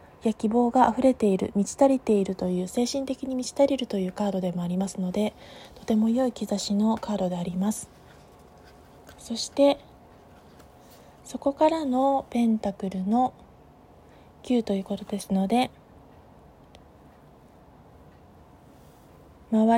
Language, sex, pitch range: Japanese, female, 200-250 Hz